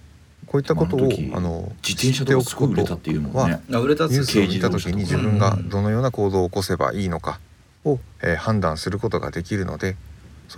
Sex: male